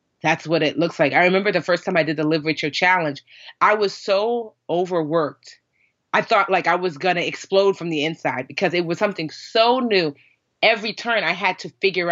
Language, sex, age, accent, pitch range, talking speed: English, female, 30-49, American, 155-190 Hz, 215 wpm